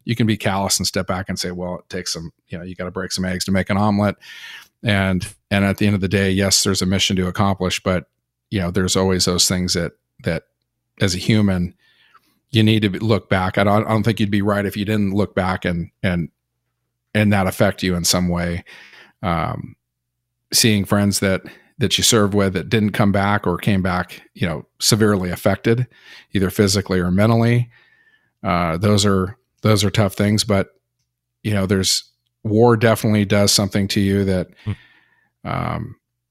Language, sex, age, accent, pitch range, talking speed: English, male, 40-59, American, 95-110 Hz, 195 wpm